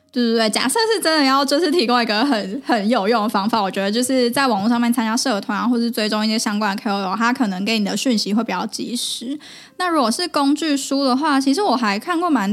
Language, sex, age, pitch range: Chinese, female, 10-29, 215-265 Hz